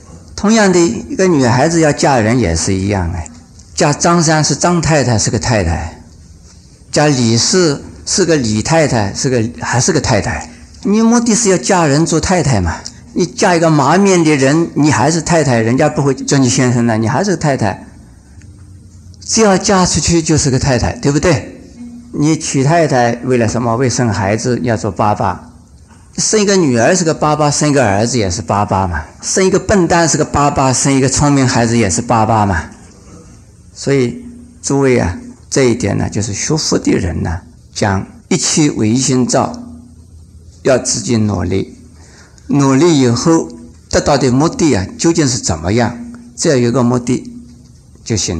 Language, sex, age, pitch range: Chinese, male, 50-69, 100-150 Hz